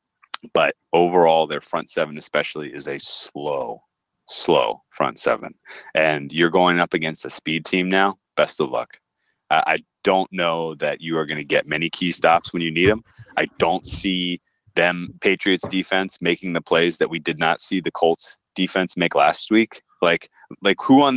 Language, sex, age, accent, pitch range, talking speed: English, male, 30-49, American, 80-95 Hz, 180 wpm